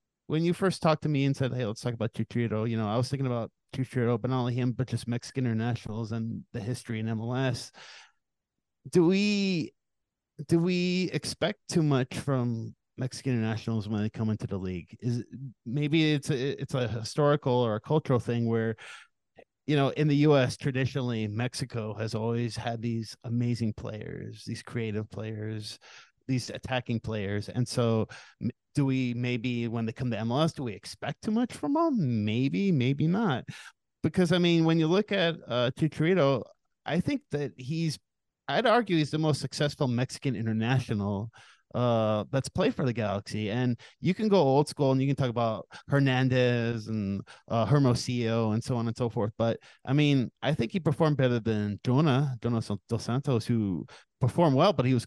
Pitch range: 115-145 Hz